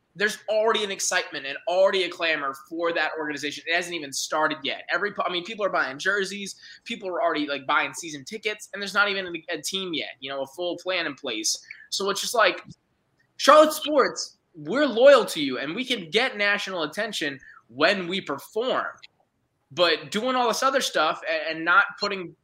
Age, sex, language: 20-39, male, English